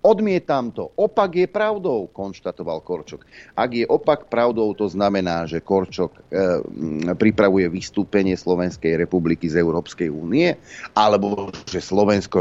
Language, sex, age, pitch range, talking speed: Slovak, male, 40-59, 90-115 Hz, 130 wpm